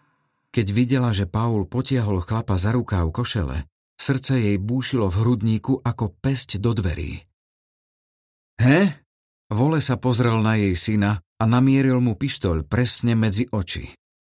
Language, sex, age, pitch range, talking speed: Slovak, male, 50-69, 95-125 Hz, 140 wpm